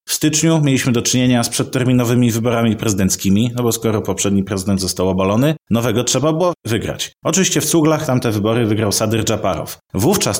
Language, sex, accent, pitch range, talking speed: Polish, male, native, 110-155 Hz, 165 wpm